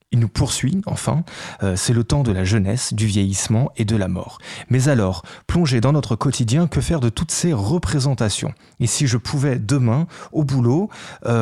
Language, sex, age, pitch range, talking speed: French, male, 30-49, 105-140 Hz, 195 wpm